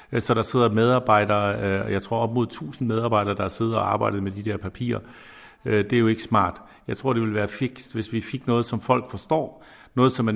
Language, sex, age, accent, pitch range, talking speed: Danish, male, 60-79, native, 110-130 Hz, 225 wpm